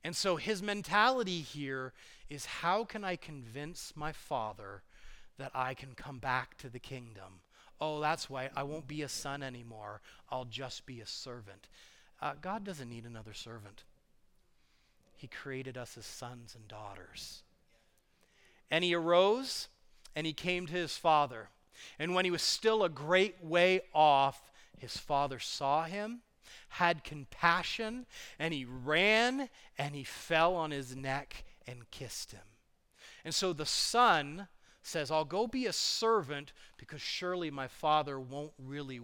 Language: English